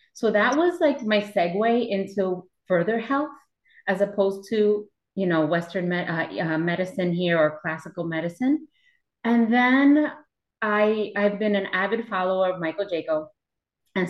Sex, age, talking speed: female, 30-49, 150 wpm